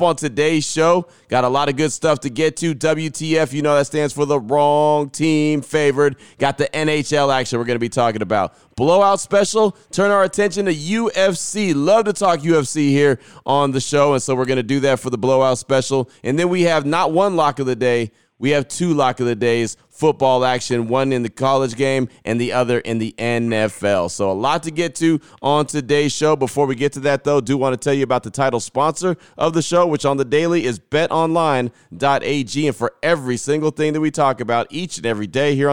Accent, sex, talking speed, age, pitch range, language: American, male, 230 wpm, 30-49, 125-155 Hz, English